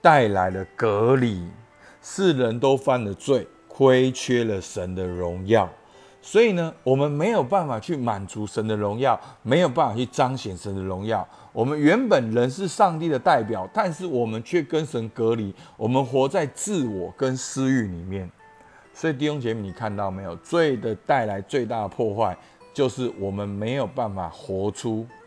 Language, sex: Chinese, male